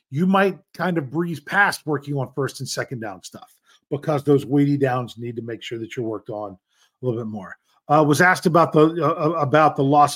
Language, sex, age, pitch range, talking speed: English, male, 40-59, 135-185 Hz, 225 wpm